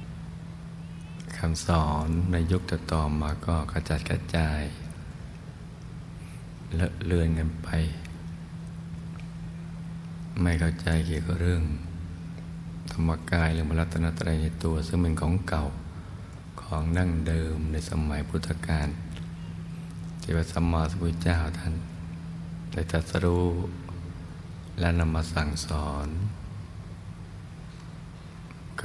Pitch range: 80-85 Hz